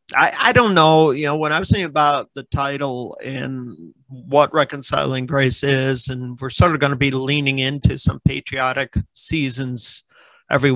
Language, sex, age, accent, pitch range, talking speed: English, male, 50-69, American, 125-150 Hz, 175 wpm